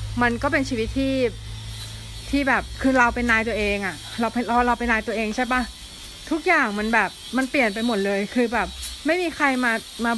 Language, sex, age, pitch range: Thai, female, 20-39, 185-245 Hz